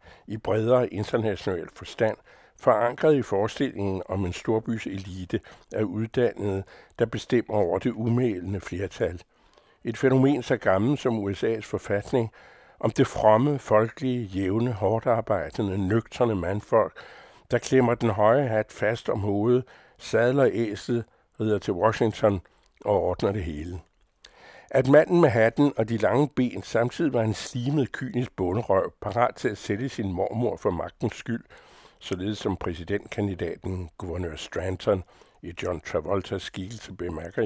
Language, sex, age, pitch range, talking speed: Danish, male, 60-79, 100-125 Hz, 135 wpm